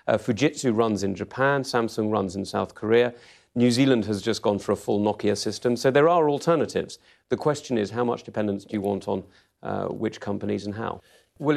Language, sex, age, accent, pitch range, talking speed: English, male, 40-59, British, 100-120 Hz, 205 wpm